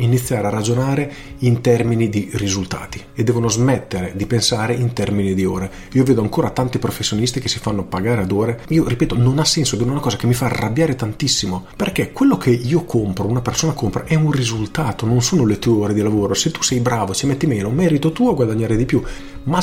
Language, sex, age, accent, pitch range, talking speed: Italian, male, 40-59, native, 105-125 Hz, 220 wpm